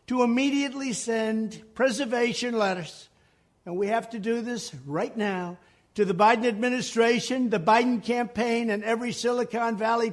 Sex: male